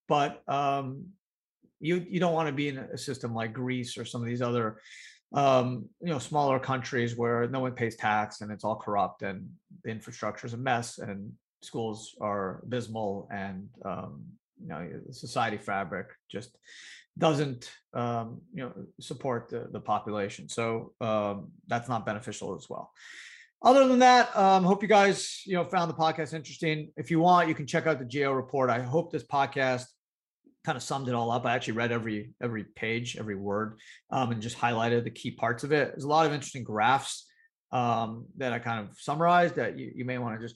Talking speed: 195 wpm